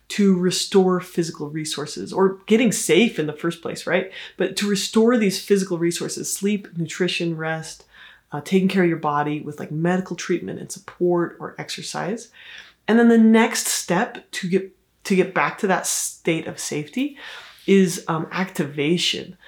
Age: 30-49